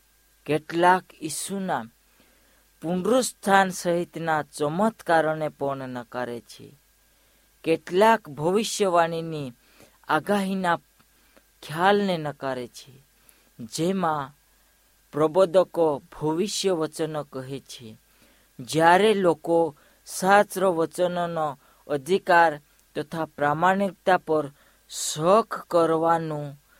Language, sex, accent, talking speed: Hindi, female, native, 60 wpm